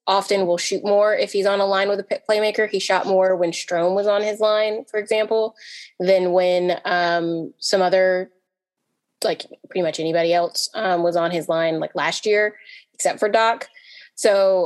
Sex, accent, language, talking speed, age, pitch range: female, American, English, 185 wpm, 20-39, 175-205 Hz